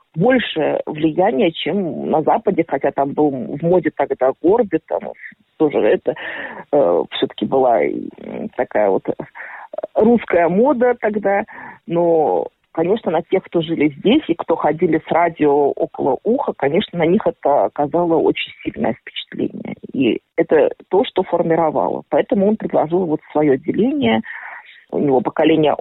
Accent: native